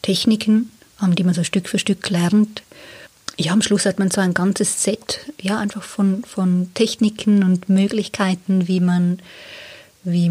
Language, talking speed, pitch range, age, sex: German, 155 wpm, 180-200 Hz, 20-39, female